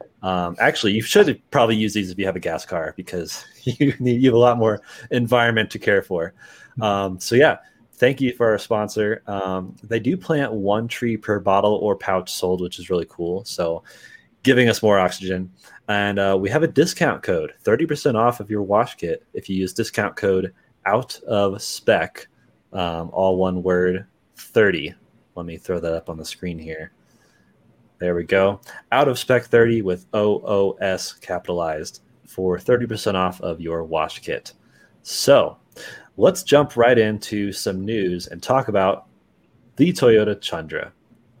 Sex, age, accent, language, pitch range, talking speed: male, 20-39, American, English, 90-115 Hz, 170 wpm